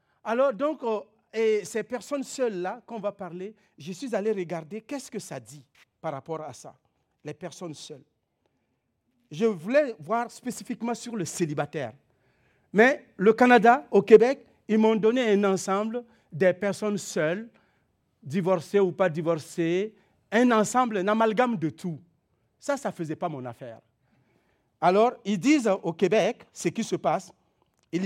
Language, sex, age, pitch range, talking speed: French, male, 50-69, 170-230 Hz, 155 wpm